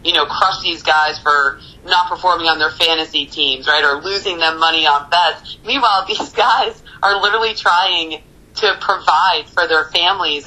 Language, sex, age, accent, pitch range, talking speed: English, female, 30-49, American, 150-175 Hz, 170 wpm